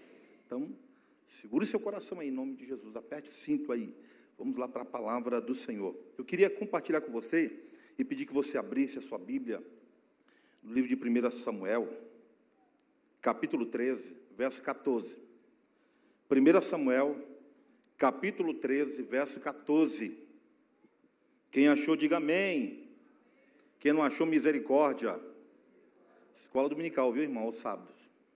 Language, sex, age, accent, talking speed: Portuguese, male, 40-59, Brazilian, 130 wpm